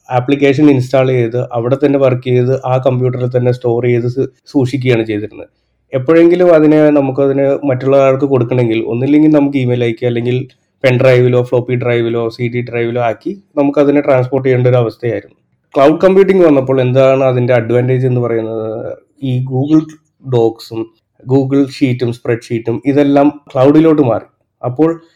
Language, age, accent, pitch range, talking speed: Malayalam, 20-39, native, 120-145 Hz, 130 wpm